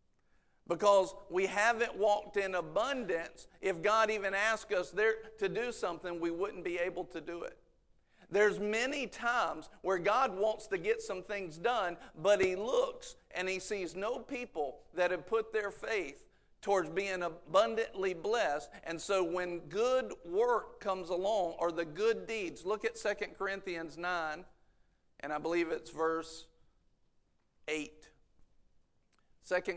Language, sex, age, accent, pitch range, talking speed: English, male, 50-69, American, 170-215 Hz, 145 wpm